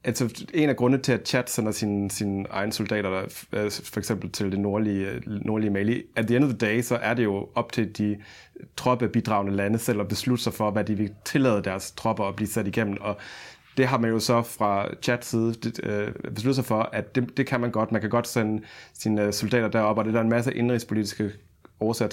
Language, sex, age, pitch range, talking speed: Danish, male, 30-49, 100-120 Hz, 205 wpm